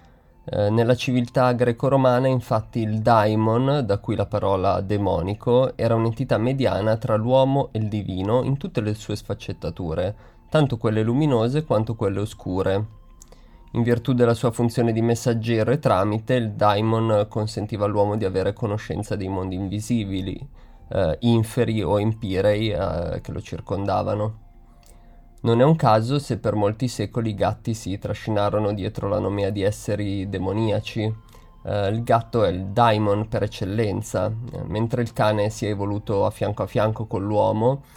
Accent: native